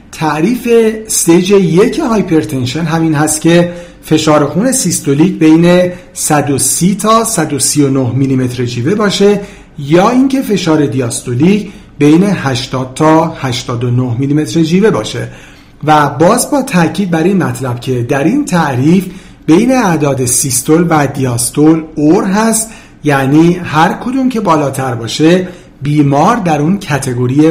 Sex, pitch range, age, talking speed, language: male, 140-195 Hz, 50-69, 120 wpm, Persian